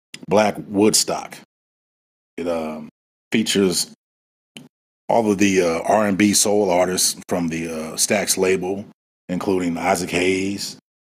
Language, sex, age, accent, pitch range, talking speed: English, male, 30-49, American, 80-95 Hz, 110 wpm